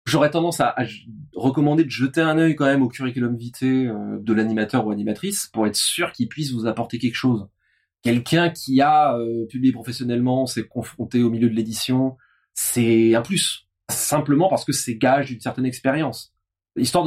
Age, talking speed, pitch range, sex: 30-49, 180 wpm, 115-150 Hz, male